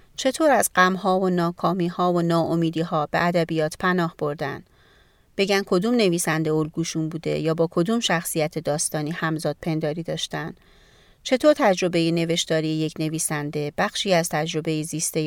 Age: 30-49